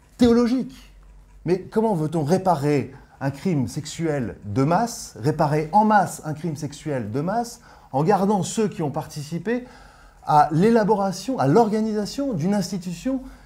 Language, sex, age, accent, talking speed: French, male, 30-49, French, 135 wpm